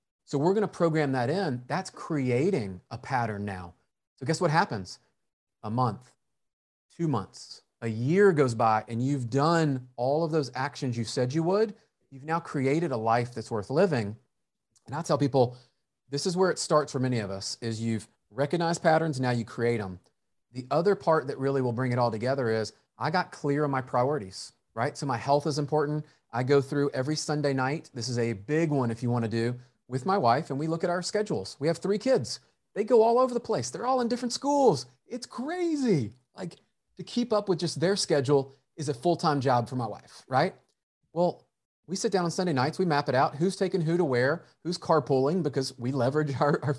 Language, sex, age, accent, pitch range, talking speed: English, male, 30-49, American, 125-170 Hz, 215 wpm